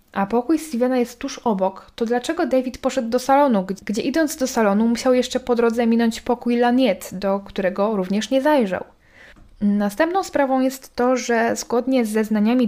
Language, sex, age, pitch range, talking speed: Polish, female, 10-29, 200-245 Hz, 170 wpm